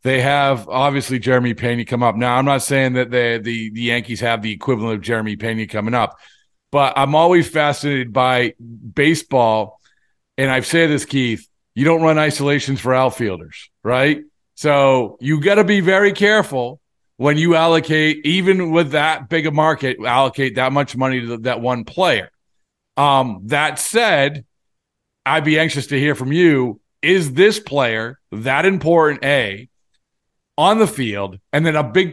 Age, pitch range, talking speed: 40-59, 130-170 Hz, 165 wpm